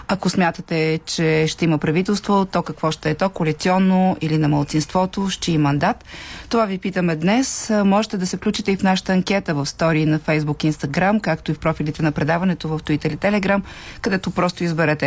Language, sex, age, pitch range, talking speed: Bulgarian, female, 40-59, 165-200 Hz, 190 wpm